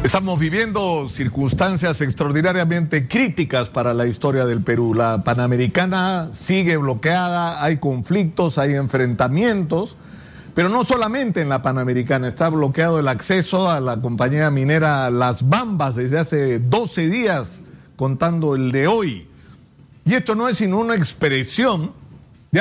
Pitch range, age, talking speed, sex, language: 145-205 Hz, 50-69, 135 wpm, male, Spanish